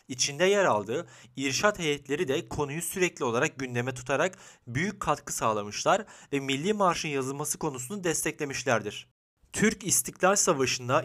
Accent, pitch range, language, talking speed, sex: native, 125-170 Hz, Turkish, 125 wpm, male